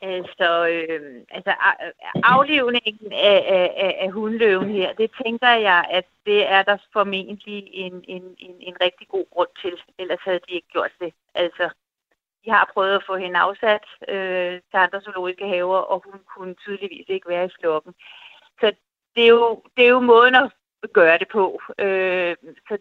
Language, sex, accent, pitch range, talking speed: Danish, female, native, 180-215 Hz, 160 wpm